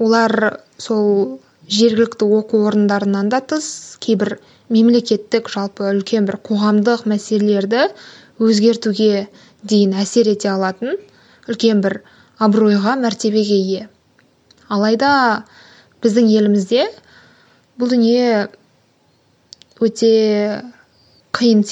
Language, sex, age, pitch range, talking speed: Russian, female, 20-39, 200-230 Hz, 70 wpm